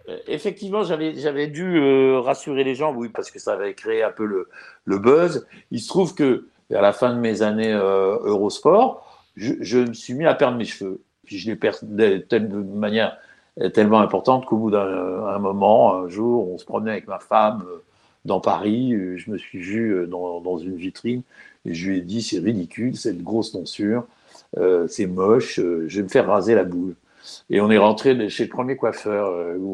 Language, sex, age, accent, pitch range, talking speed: French, male, 60-79, French, 95-130 Hz, 210 wpm